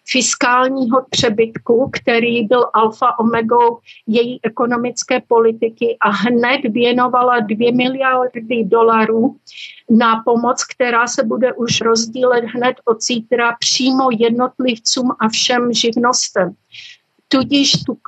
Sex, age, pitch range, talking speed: female, 50-69, 225-250 Hz, 105 wpm